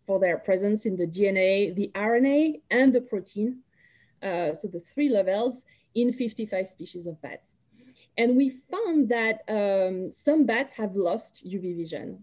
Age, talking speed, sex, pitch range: 20-39, 150 wpm, female, 180-225 Hz